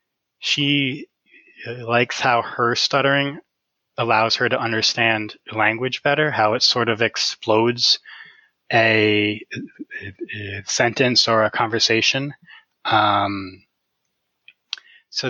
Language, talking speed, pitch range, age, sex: English, 100 wpm, 110-140 Hz, 20-39, male